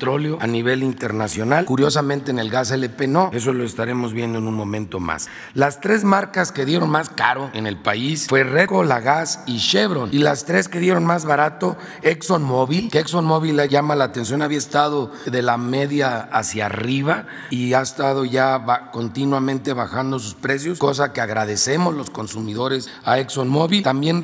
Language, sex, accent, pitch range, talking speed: Spanish, male, Mexican, 120-150 Hz, 175 wpm